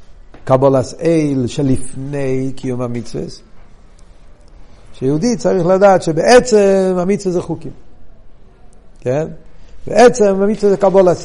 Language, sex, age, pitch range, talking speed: Hebrew, male, 50-69, 150-215 Hz, 90 wpm